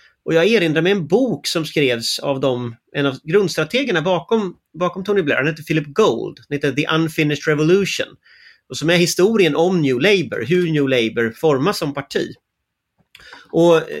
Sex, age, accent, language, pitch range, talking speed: male, 30-49, native, Swedish, 135-180 Hz, 165 wpm